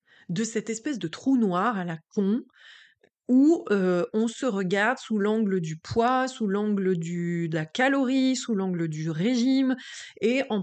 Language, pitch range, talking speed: French, 190-245 Hz, 170 wpm